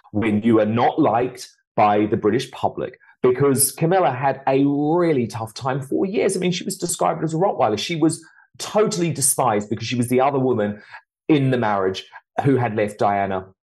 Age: 40-59